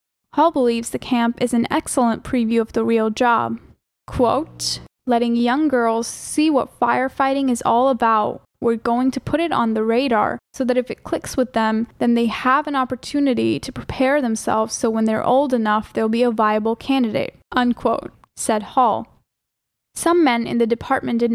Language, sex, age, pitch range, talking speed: English, female, 10-29, 230-265 Hz, 180 wpm